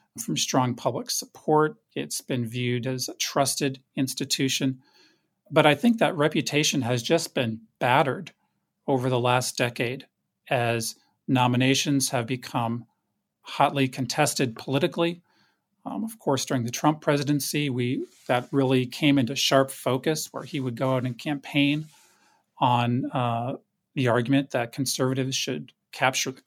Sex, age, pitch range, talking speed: male, 40-59, 130-155 Hz, 140 wpm